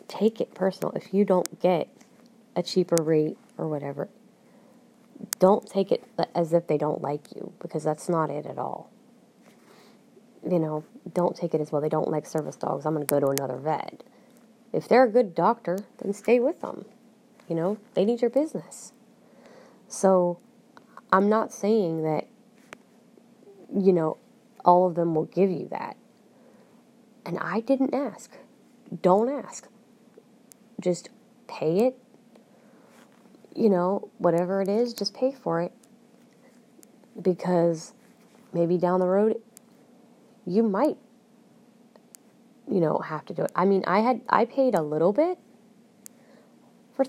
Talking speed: 150 wpm